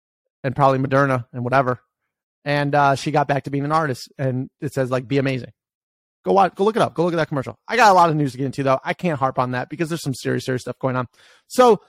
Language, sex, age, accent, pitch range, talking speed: English, male, 30-49, American, 140-205 Hz, 280 wpm